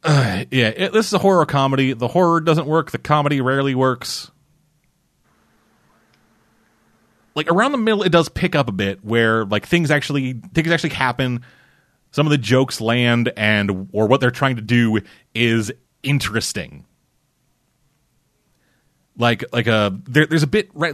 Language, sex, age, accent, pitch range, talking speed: English, male, 30-49, American, 110-150 Hz, 160 wpm